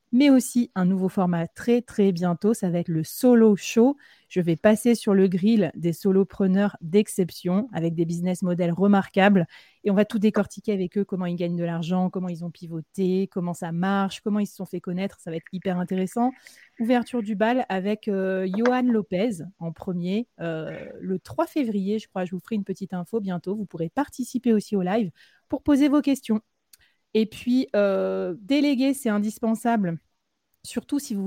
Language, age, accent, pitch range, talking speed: French, 30-49, French, 180-225 Hz, 190 wpm